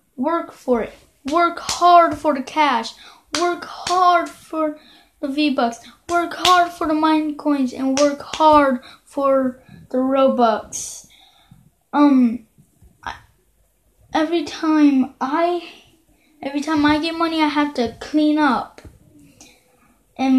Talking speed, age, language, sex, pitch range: 120 wpm, 20-39, English, female, 235-305 Hz